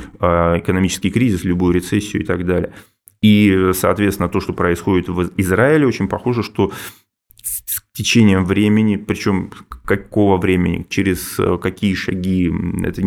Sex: male